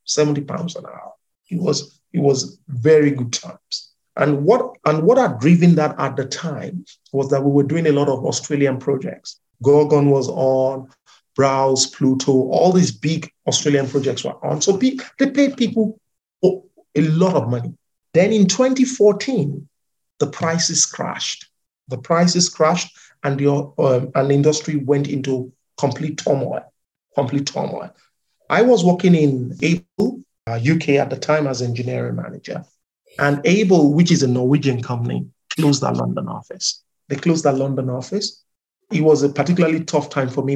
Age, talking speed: 50-69, 165 wpm